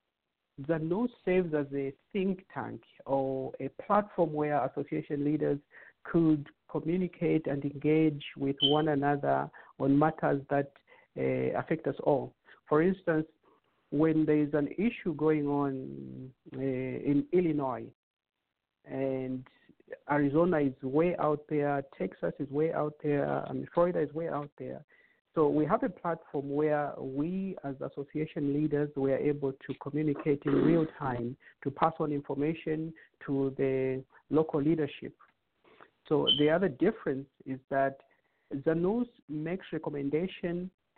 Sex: male